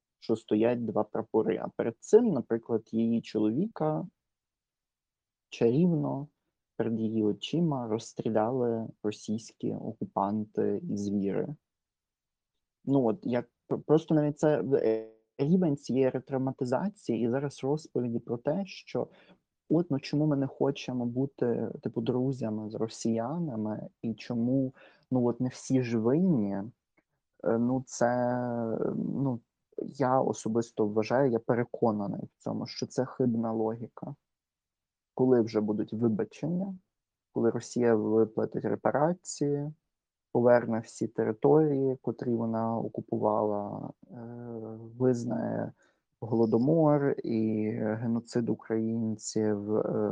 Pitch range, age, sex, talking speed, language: 110-135 Hz, 30-49, male, 105 wpm, Ukrainian